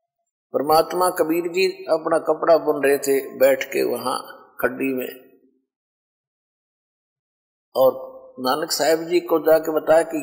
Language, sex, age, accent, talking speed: Hindi, male, 50-69, native, 125 wpm